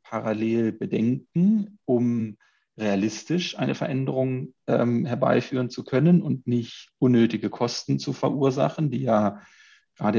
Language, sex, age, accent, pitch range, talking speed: German, male, 40-59, German, 110-135 Hz, 110 wpm